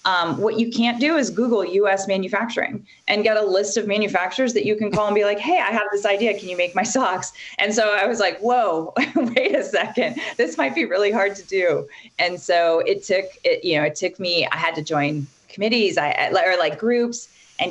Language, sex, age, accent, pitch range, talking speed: English, female, 30-49, American, 160-210 Hz, 230 wpm